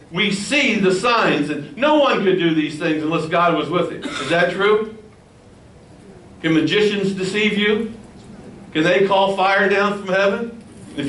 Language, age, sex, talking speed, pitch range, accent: English, 60-79, male, 170 wpm, 155-195 Hz, American